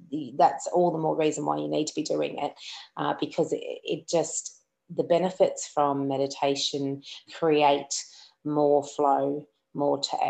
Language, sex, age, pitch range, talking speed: English, female, 30-49, 150-205 Hz, 150 wpm